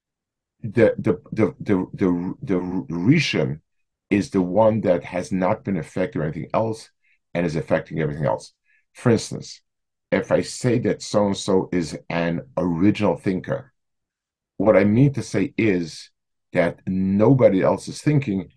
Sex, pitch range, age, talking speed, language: male, 90-125 Hz, 50-69, 145 wpm, English